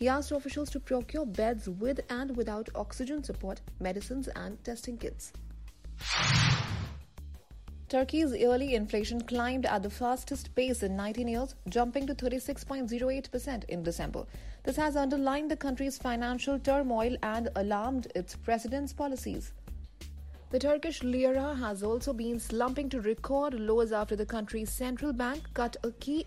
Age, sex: 30-49, female